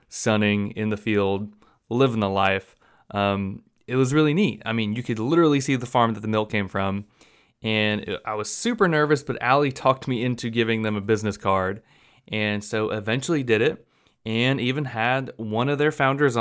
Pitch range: 105-135 Hz